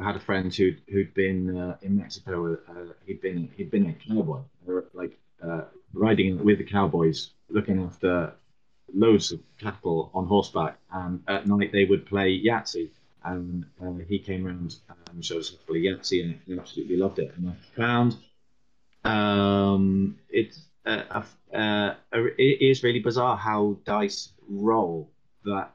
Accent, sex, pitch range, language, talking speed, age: British, male, 95-110 Hz, English, 165 wpm, 30-49